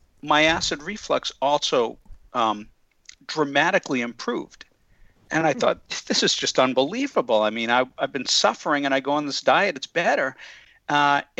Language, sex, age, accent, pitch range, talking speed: English, male, 50-69, American, 125-150 Hz, 155 wpm